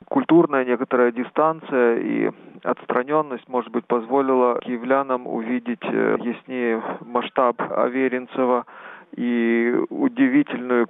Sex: male